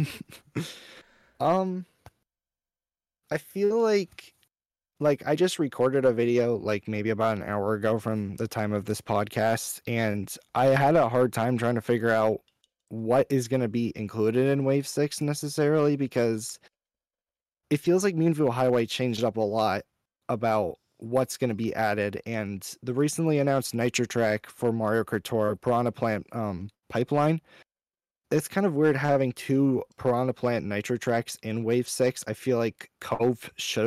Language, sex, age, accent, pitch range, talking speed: English, male, 20-39, American, 110-140 Hz, 160 wpm